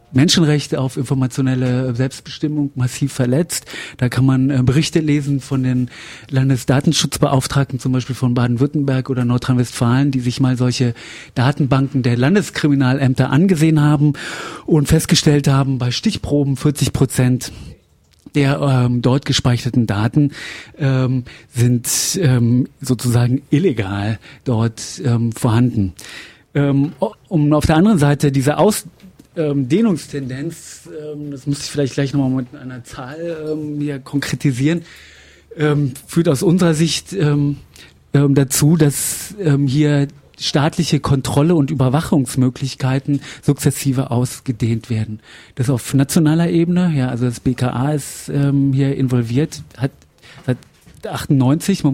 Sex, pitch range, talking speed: male, 125-150 Hz, 115 wpm